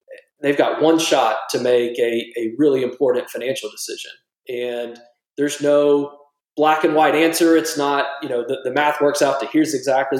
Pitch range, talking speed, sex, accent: 125-155 Hz, 180 wpm, male, American